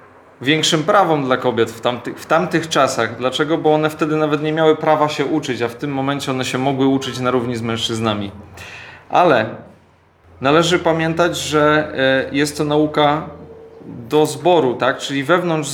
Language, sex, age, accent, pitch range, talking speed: Polish, male, 40-59, native, 130-160 Hz, 165 wpm